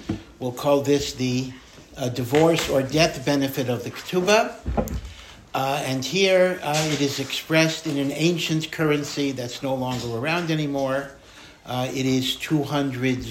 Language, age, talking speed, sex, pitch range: English, 60-79, 145 wpm, male, 130-160 Hz